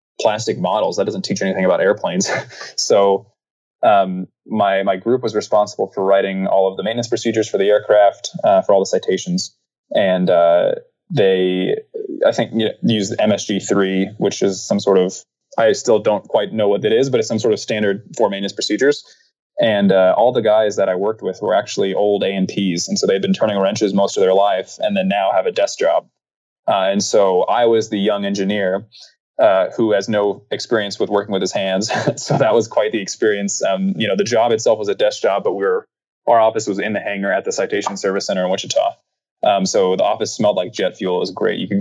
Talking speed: 225 wpm